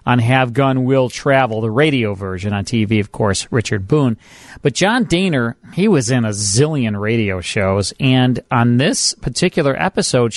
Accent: American